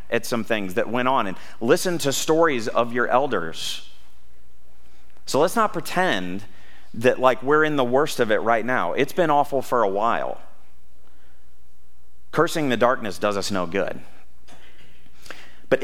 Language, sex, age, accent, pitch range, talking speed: English, male, 40-59, American, 95-145 Hz, 155 wpm